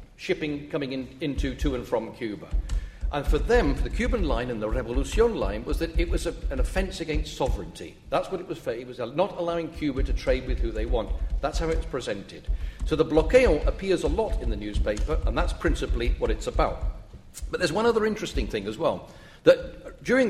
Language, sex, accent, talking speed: English, male, British, 215 wpm